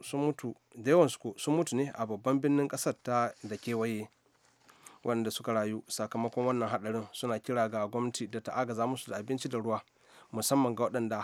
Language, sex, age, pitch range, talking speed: English, male, 30-49, 115-145 Hz, 180 wpm